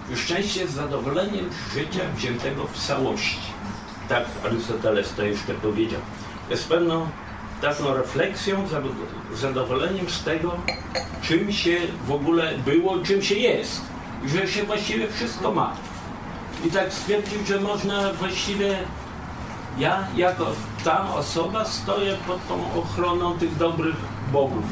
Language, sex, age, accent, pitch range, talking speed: Polish, male, 50-69, native, 135-180 Hz, 120 wpm